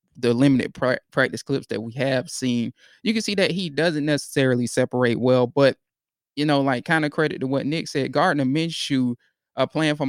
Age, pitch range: 20-39, 130-150 Hz